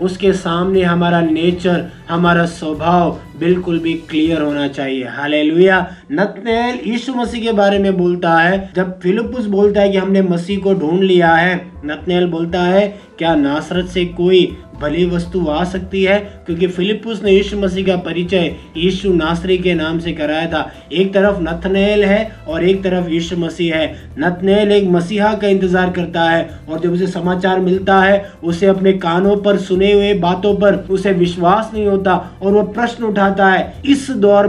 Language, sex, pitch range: Hindi, male, 170-195 Hz